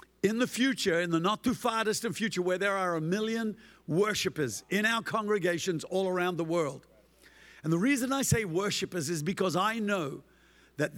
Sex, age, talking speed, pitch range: male, 50-69, 185 wpm, 165-215 Hz